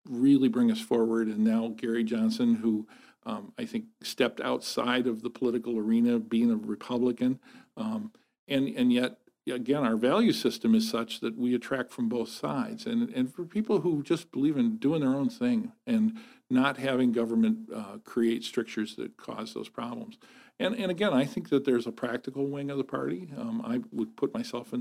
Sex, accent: male, American